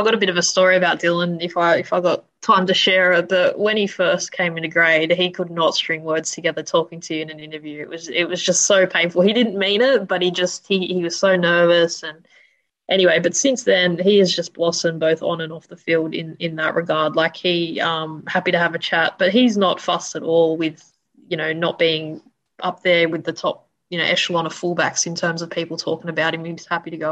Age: 20-39